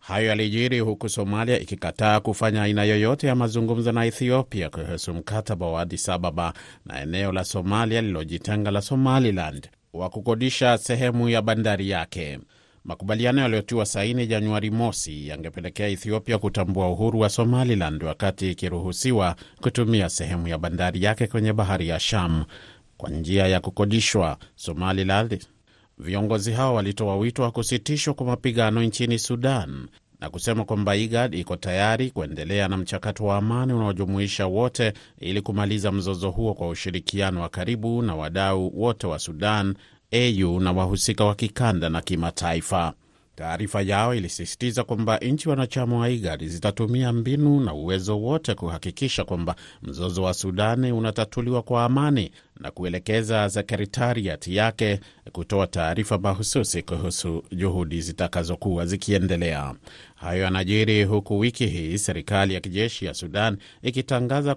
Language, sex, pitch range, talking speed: Swahili, male, 90-115 Hz, 130 wpm